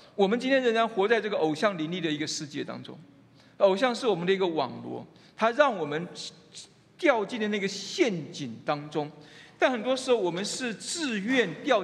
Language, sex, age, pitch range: Chinese, male, 50-69, 160-225 Hz